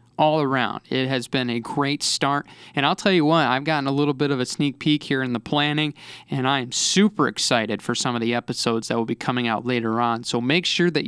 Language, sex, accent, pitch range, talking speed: English, male, American, 130-165 Hz, 250 wpm